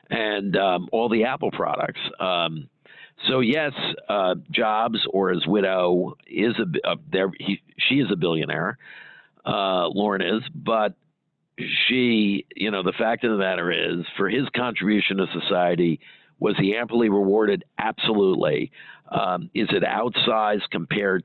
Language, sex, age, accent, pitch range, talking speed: English, male, 50-69, American, 85-110 Hz, 140 wpm